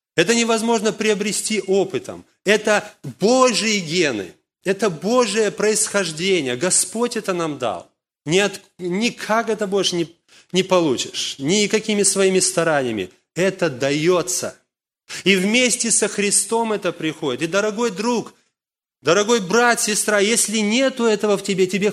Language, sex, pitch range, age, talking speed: Russian, male, 135-210 Hz, 30-49, 115 wpm